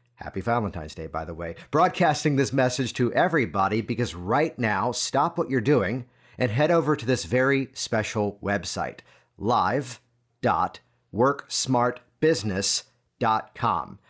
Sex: male